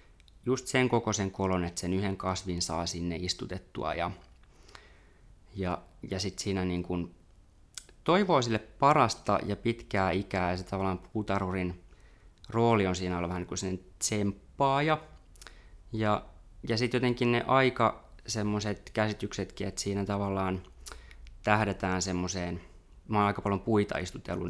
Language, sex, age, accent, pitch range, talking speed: Finnish, male, 20-39, native, 90-110 Hz, 135 wpm